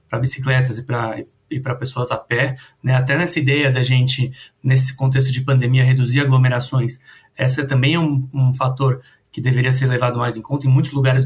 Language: Portuguese